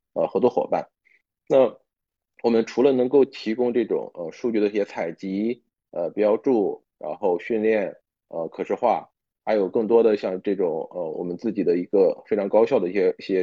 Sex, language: male, Chinese